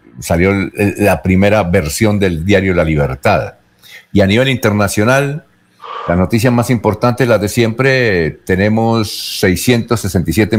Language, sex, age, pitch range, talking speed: Spanish, male, 50-69, 95-130 Hz, 120 wpm